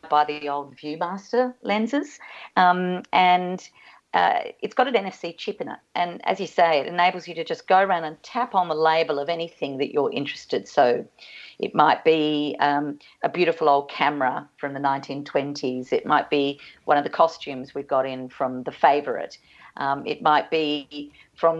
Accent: Australian